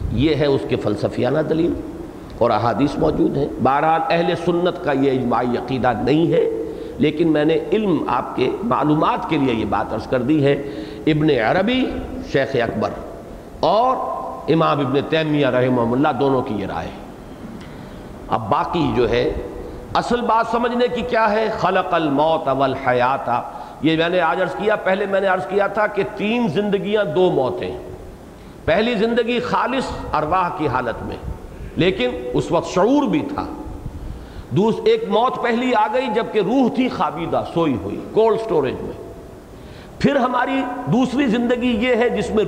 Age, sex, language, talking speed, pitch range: 50-69, male, English, 155 wpm, 150-240 Hz